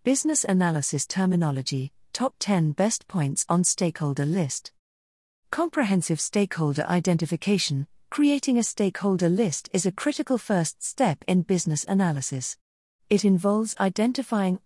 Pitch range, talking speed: 150-215 Hz, 115 wpm